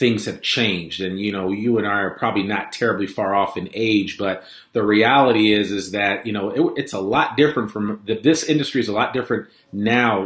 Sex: male